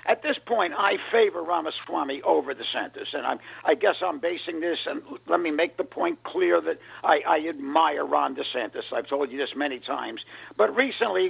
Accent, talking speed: American, 190 wpm